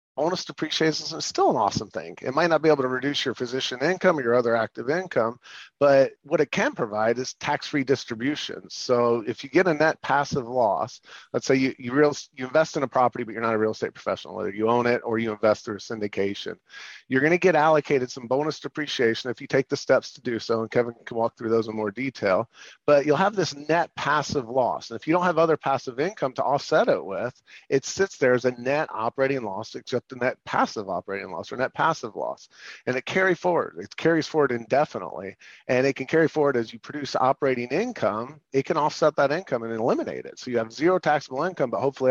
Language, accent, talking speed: English, American, 225 wpm